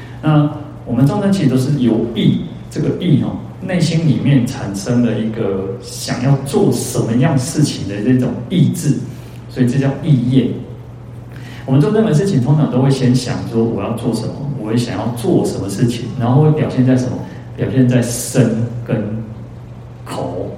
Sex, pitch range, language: male, 115-135 Hz, Chinese